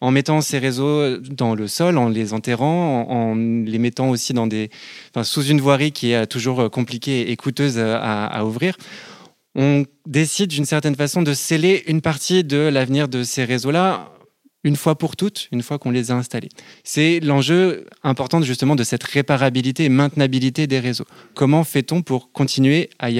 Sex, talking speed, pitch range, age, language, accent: male, 185 wpm, 120-150 Hz, 20-39, French, French